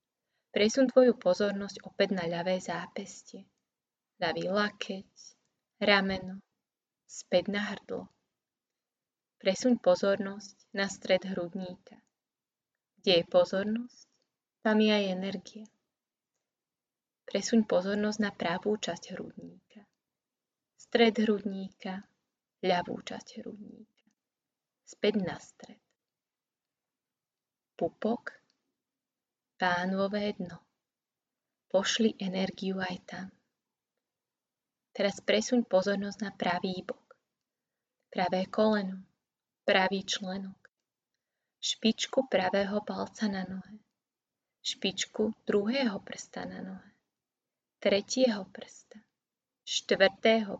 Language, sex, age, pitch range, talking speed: Slovak, female, 20-39, 190-225 Hz, 80 wpm